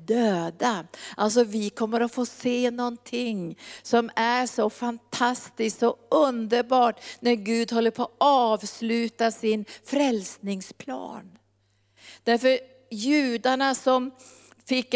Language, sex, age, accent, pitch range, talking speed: Swedish, female, 50-69, native, 205-245 Hz, 105 wpm